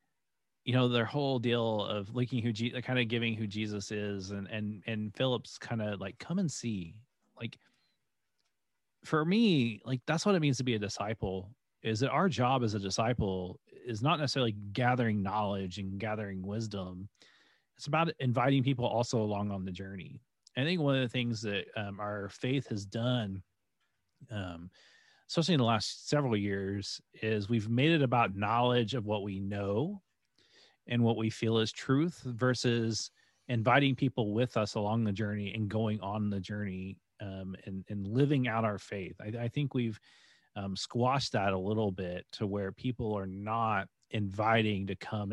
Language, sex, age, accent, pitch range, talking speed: English, male, 30-49, American, 100-125 Hz, 175 wpm